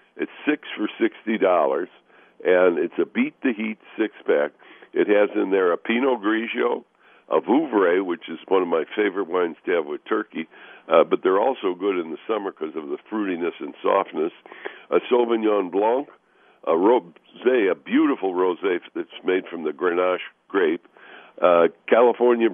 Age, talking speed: 60-79, 155 wpm